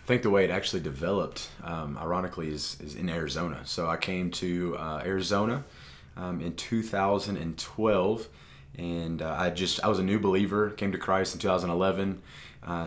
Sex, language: male, English